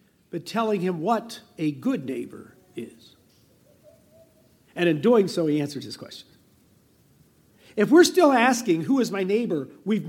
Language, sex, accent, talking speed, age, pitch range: English, male, American, 150 wpm, 50-69, 170-230 Hz